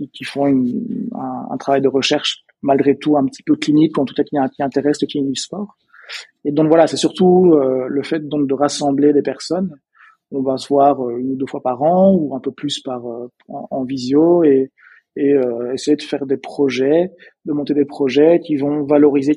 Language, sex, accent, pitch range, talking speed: French, male, French, 130-150 Hz, 215 wpm